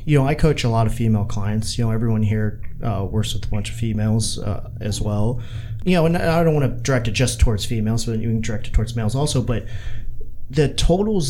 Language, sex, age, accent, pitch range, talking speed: English, male, 30-49, American, 110-130 Hz, 245 wpm